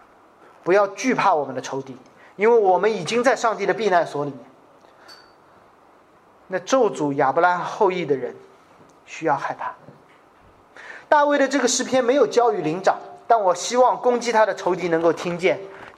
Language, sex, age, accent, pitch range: Chinese, male, 30-49, native, 175-270 Hz